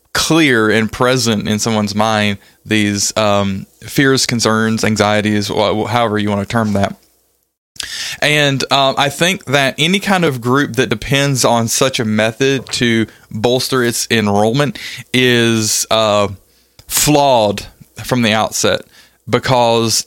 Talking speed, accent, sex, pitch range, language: 130 wpm, American, male, 110-130 Hz, English